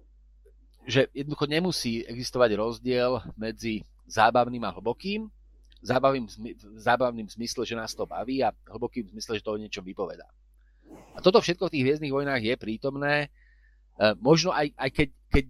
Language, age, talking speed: Slovak, 30-49, 150 wpm